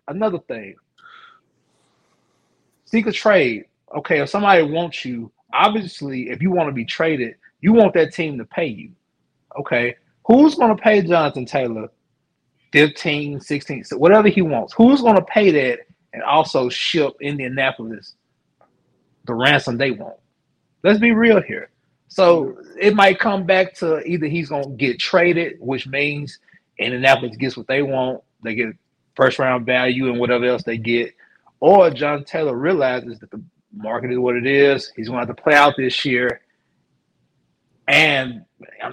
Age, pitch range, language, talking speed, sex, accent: 30-49, 125-185 Hz, English, 160 wpm, male, American